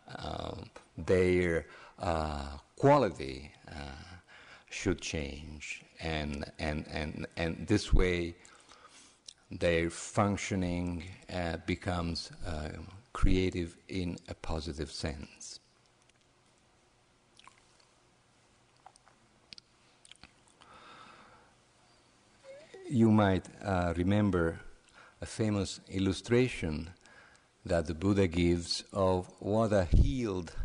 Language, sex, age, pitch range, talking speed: English, male, 50-69, 80-100 Hz, 75 wpm